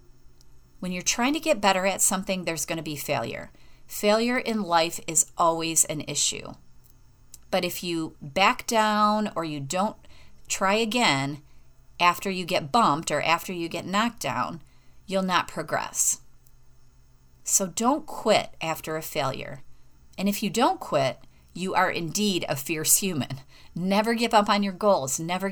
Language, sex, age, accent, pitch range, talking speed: English, female, 40-59, American, 150-210 Hz, 160 wpm